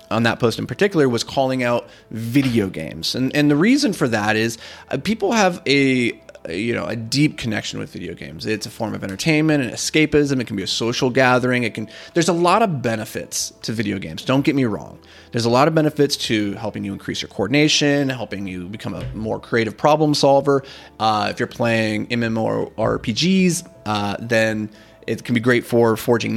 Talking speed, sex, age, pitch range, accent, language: 200 wpm, male, 30-49, 110-140 Hz, American, English